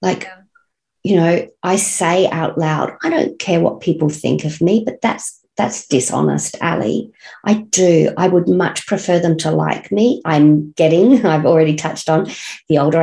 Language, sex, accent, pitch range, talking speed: English, female, Australian, 155-195 Hz, 175 wpm